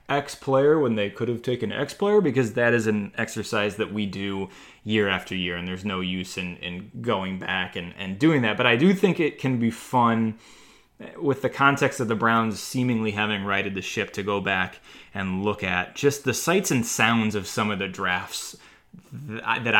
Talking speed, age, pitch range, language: 205 wpm, 20-39, 100-130 Hz, English